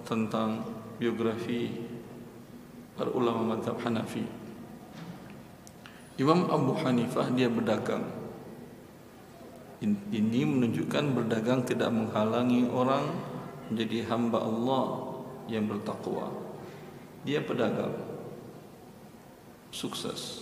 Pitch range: 115-130 Hz